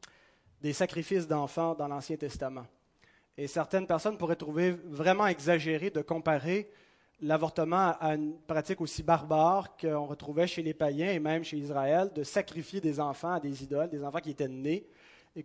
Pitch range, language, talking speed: 155-185 Hz, French, 165 wpm